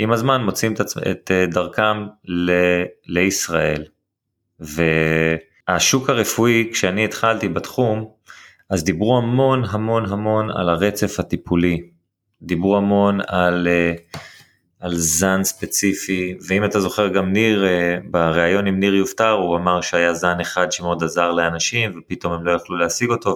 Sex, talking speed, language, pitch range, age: male, 125 wpm, Hebrew, 85-100 Hz, 30-49